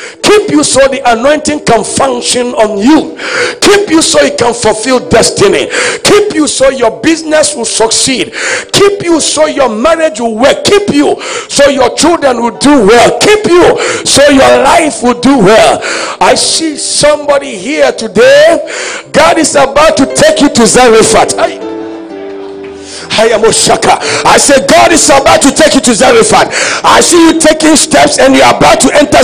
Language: English